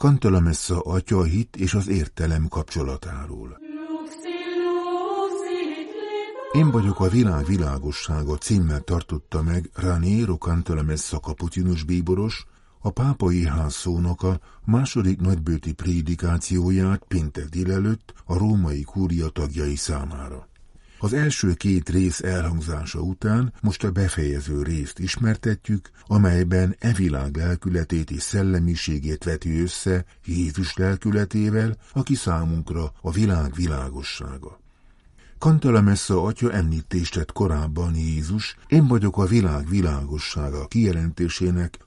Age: 50-69